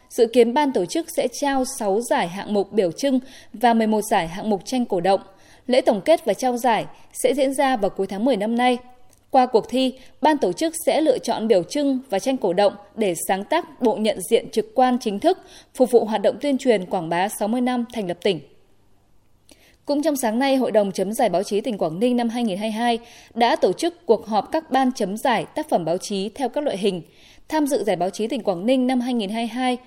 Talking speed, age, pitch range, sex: 235 wpm, 20-39, 205-265 Hz, female